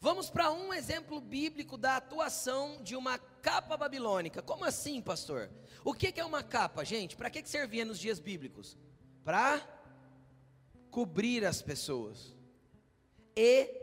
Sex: male